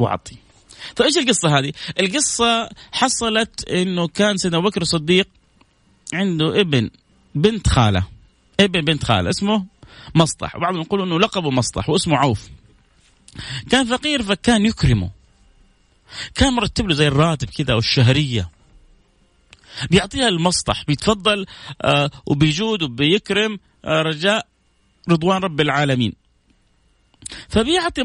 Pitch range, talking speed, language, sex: 150-245 Hz, 110 wpm, Arabic, male